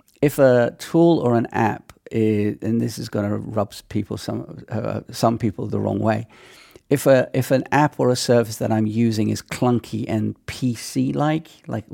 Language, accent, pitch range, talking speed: English, British, 105-130 Hz, 195 wpm